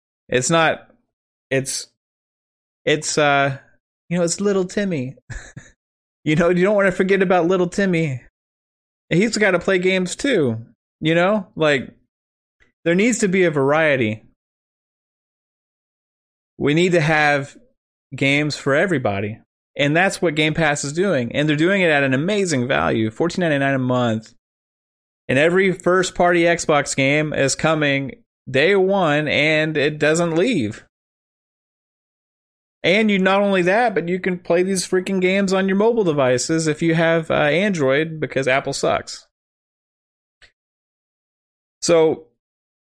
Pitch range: 135-180 Hz